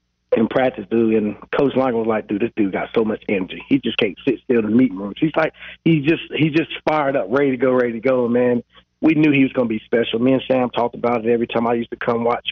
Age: 30-49